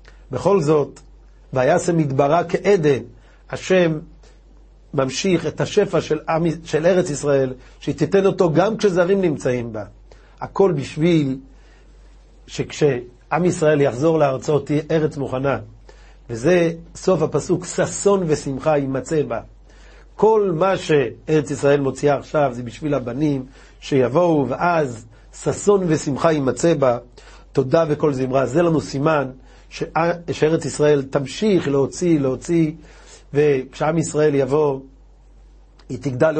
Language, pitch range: Hebrew, 135-165 Hz